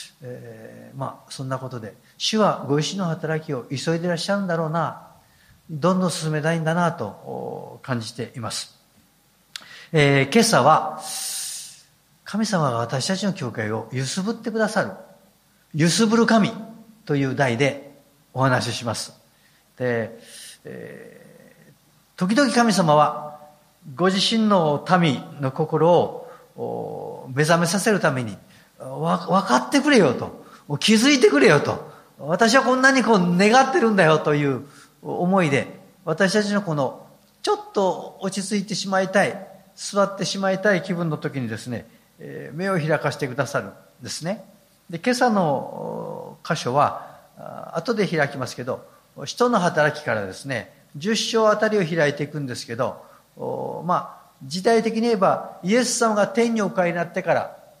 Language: Japanese